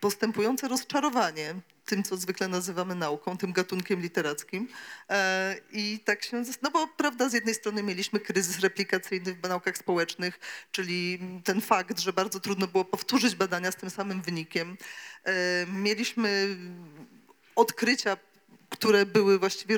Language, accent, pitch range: Polish, native, 180-215 Hz